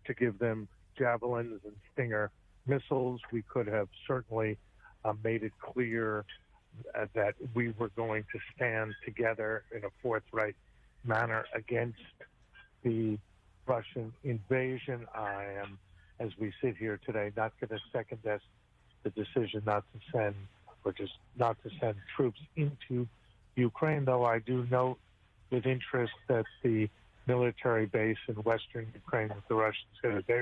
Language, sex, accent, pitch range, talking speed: English, male, American, 105-130 Hz, 145 wpm